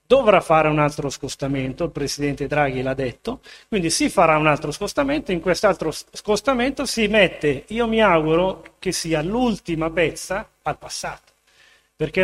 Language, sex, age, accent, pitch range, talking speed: Italian, male, 30-49, native, 160-205 Hz, 150 wpm